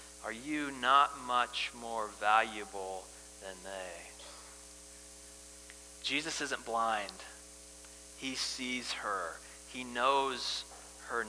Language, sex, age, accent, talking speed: English, male, 30-49, American, 90 wpm